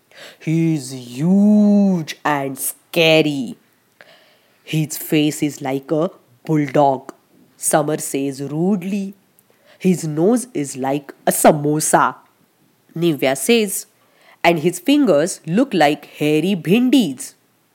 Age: 20-39